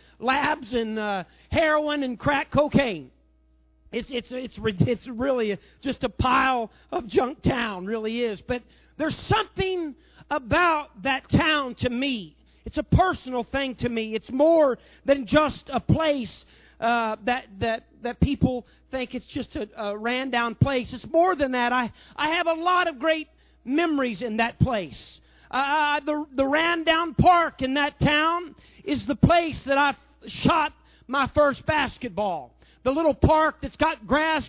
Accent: American